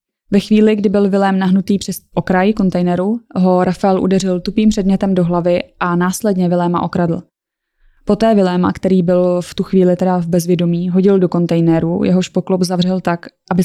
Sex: female